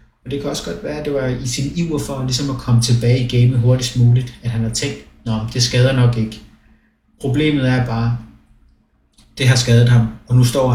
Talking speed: 225 wpm